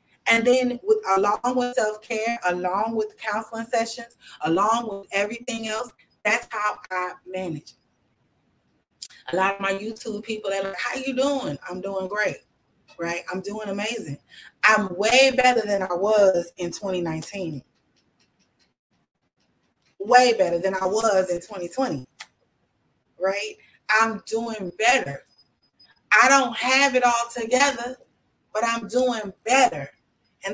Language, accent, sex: English, American, female